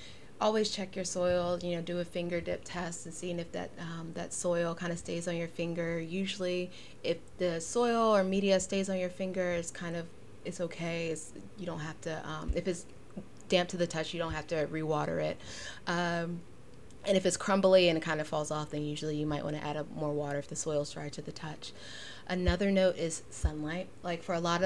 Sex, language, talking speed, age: female, English, 225 wpm, 20-39